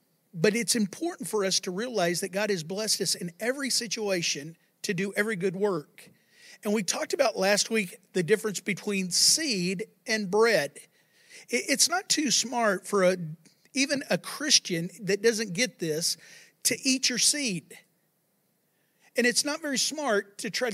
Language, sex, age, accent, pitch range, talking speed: English, male, 50-69, American, 175-225 Hz, 160 wpm